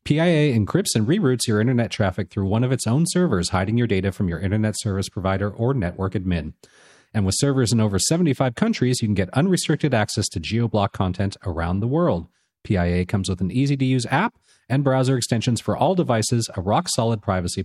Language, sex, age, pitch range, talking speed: English, male, 40-59, 95-135 Hz, 195 wpm